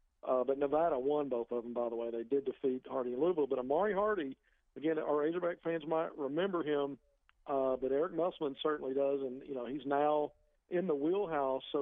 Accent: American